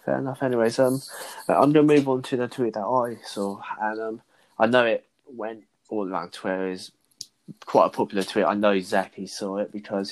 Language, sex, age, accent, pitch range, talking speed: English, male, 20-39, British, 100-115 Hz, 200 wpm